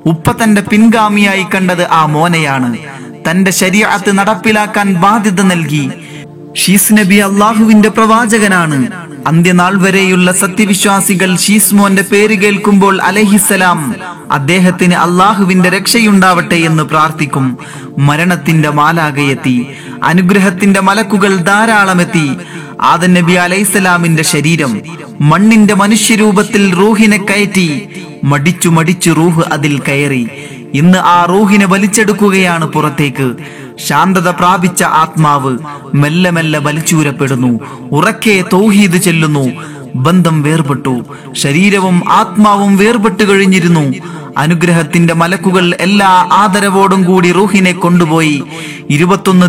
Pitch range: 155-200 Hz